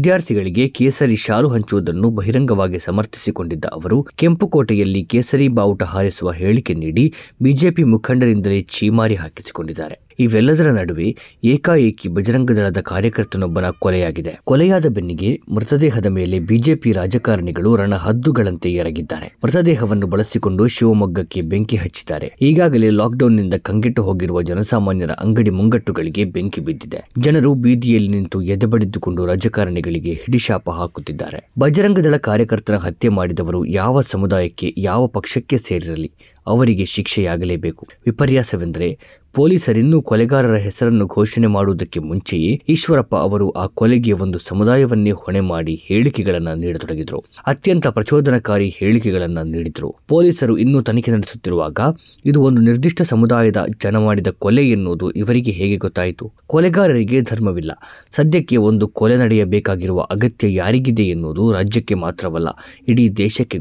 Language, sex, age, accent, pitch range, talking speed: Kannada, male, 20-39, native, 95-125 Hz, 105 wpm